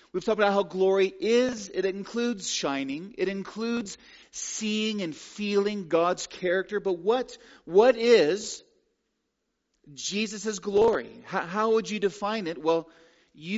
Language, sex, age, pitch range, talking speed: English, male, 40-59, 170-235 Hz, 135 wpm